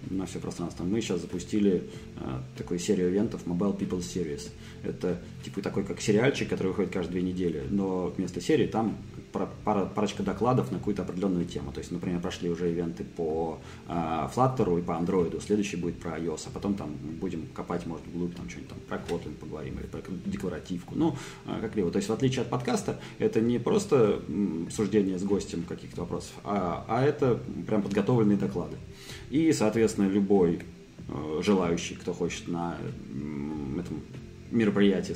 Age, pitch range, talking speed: 20-39, 85-105 Hz, 165 wpm